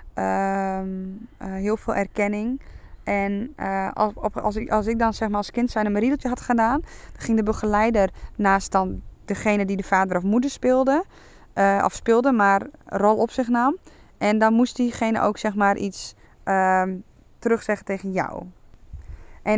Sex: female